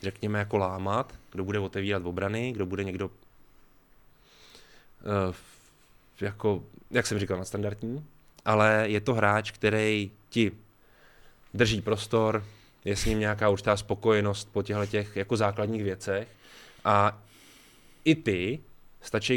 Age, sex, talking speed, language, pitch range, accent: 20-39, male, 120 wpm, Czech, 100-115 Hz, native